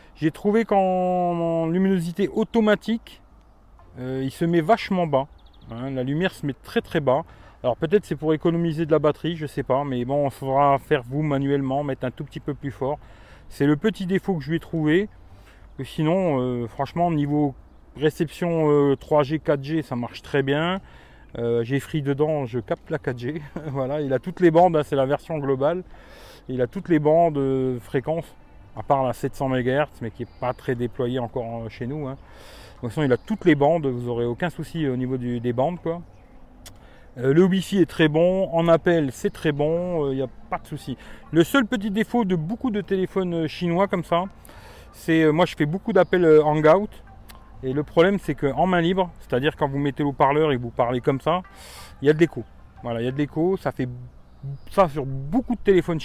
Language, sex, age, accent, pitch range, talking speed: French, male, 40-59, French, 130-170 Hz, 215 wpm